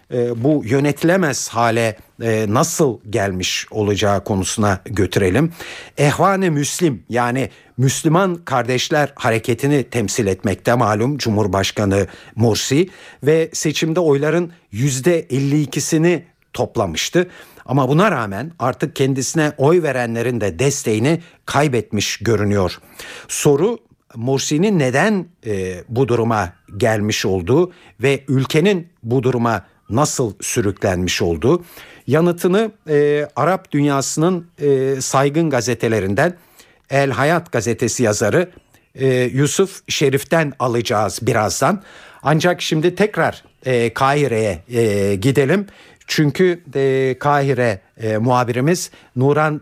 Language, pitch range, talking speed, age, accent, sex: Turkish, 115-160 Hz, 100 wpm, 60-79, native, male